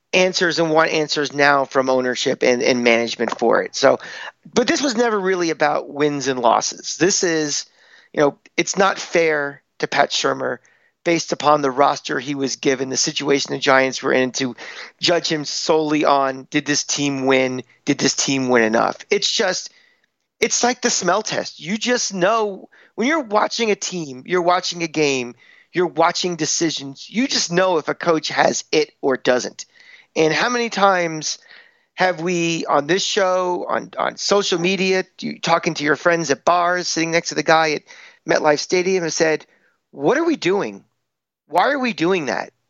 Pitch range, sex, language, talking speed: 145-200 Hz, male, English, 180 wpm